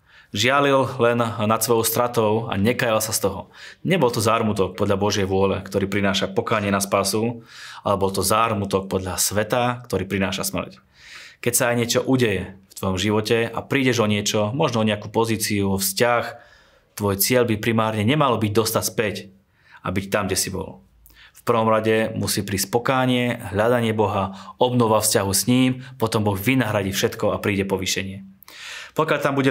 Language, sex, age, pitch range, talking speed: Slovak, male, 20-39, 100-120 Hz, 170 wpm